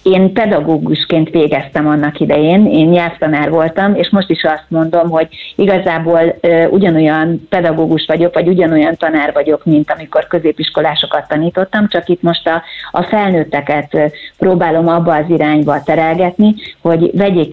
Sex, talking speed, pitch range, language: female, 135 wpm, 155-185 Hz, Hungarian